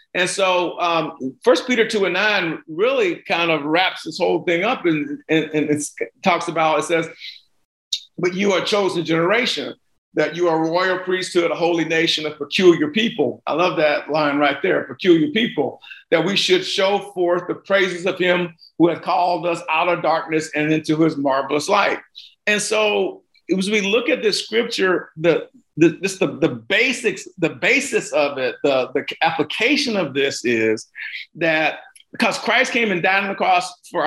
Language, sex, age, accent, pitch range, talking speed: English, male, 50-69, American, 160-200 Hz, 185 wpm